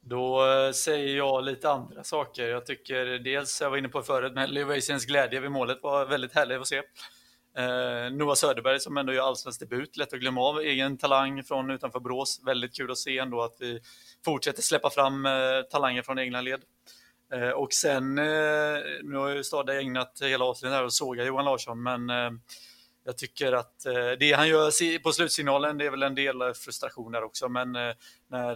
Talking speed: 185 wpm